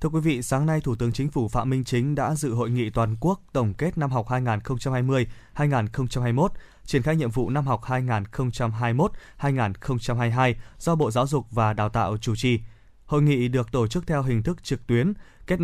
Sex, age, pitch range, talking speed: male, 20-39, 115-145 Hz, 190 wpm